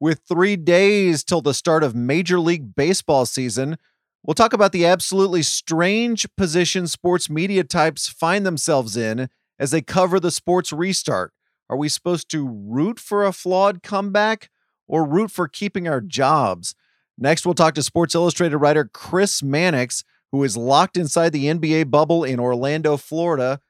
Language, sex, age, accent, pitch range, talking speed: English, male, 30-49, American, 145-180 Hz, 160 wpm